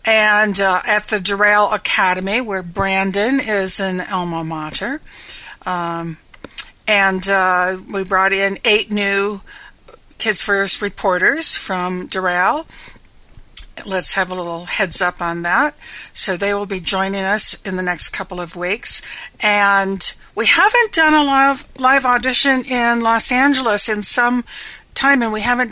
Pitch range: 190-230 Hz